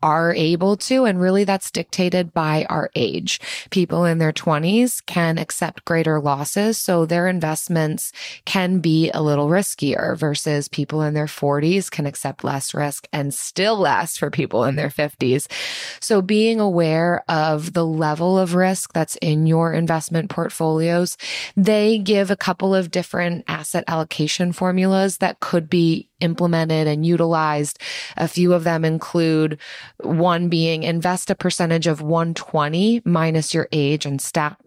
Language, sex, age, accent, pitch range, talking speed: English, female, 20-39, American, 150-180 Hz, 155 wpm